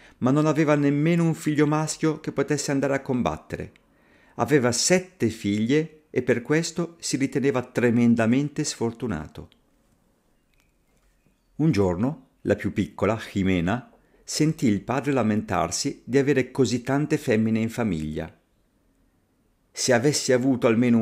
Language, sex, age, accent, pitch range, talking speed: Italian, male, 50-69, native, 95-135 Hz, 125 wpm